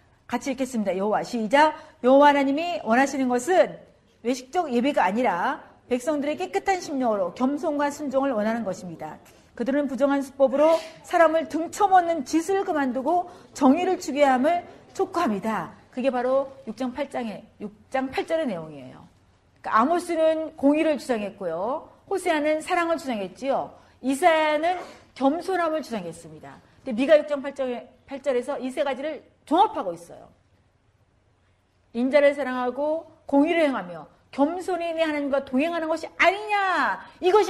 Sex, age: female, 40-59